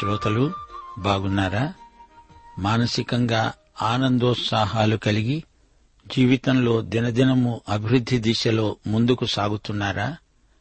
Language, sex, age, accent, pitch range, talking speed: Telugu, male, 60-79, native, 115-140 Hz, 60 wpm